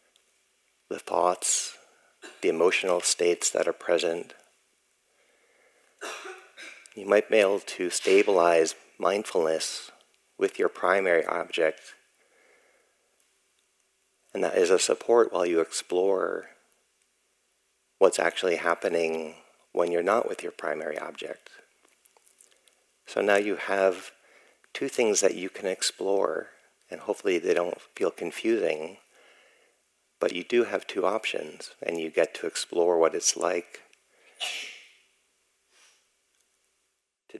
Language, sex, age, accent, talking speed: English, male, 50-69, American, 110 wpm